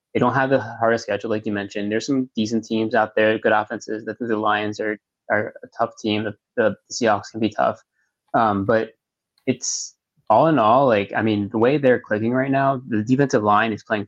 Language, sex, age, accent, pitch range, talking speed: English, male, 20-39, American, 105-125 Hz, 220 wpm